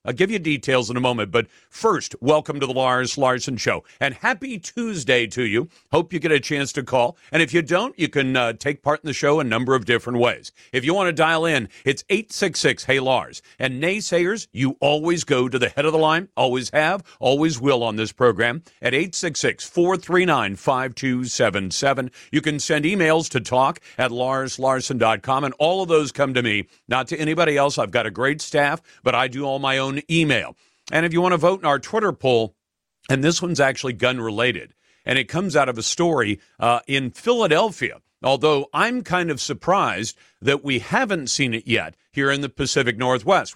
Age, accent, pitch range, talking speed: 50-69, American, 125-160 Hz, 200 wpm